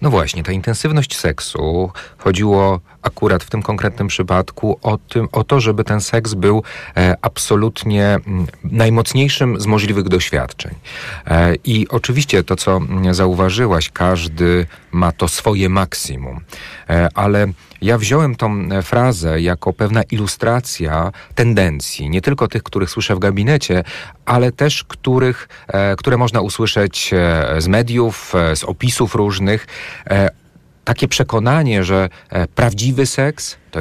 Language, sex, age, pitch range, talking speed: Polish, male, 40-59, 90-115 Hz, 120 wpm